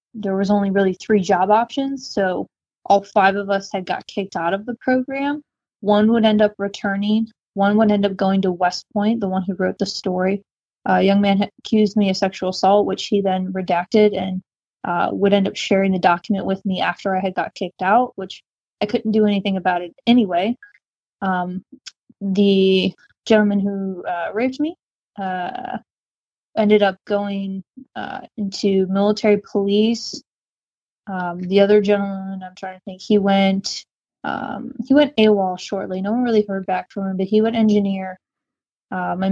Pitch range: 190-210 Hz